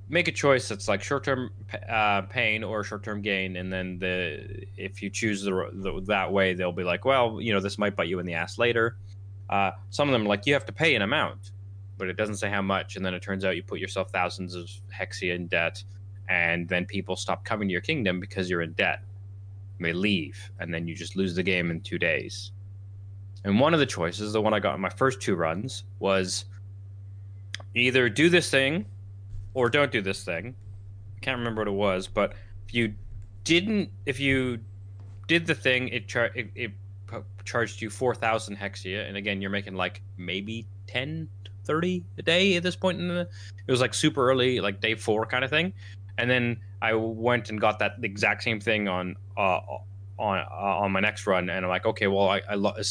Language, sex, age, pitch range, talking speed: English, male, 20-39, 95-110 Hz, 220 wpm